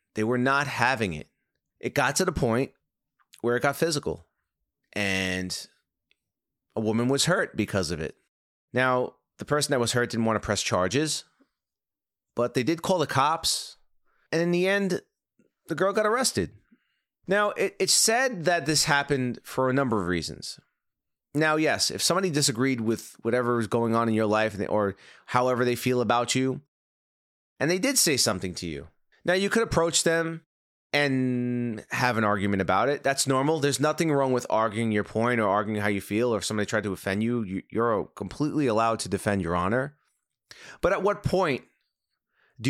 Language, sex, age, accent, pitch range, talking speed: English, male, 30-49, American, 110-165 Hz, 180 wpm